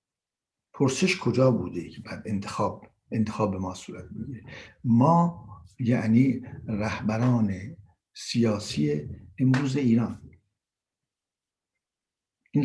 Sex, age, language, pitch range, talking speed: male, 60-79, Persian, 105-130 Hz, 75 wpm